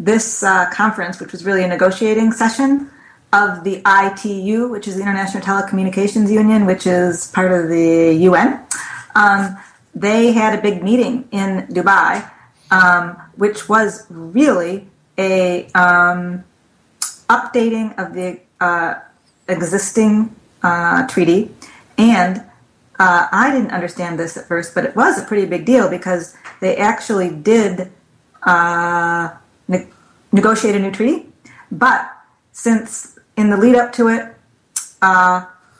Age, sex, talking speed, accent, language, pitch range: 30-49, female, 130 wpm, American, English, 180-215 Hz